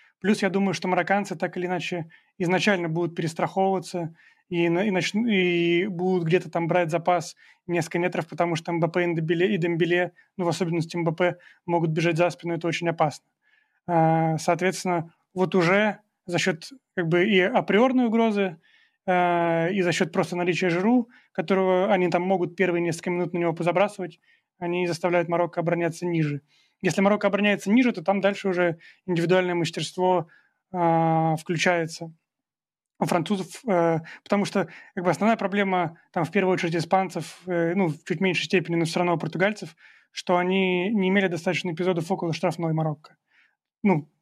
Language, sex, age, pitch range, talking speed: Russian, male, 30-49, 170-190 Hz, 155 wpm